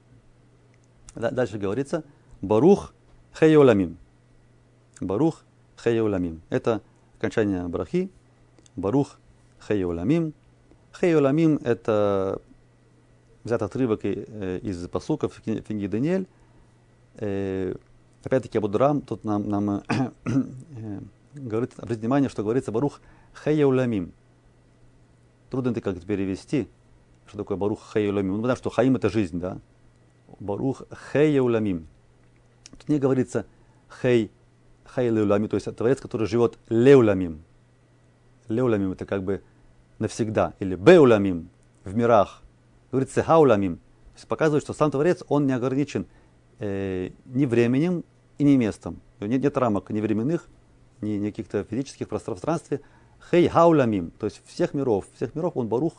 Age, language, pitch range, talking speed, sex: 40-59, Russian, 100-135 Hz, 115 wpm, male